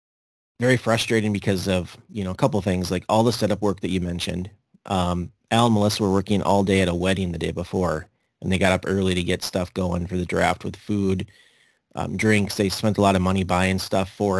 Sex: male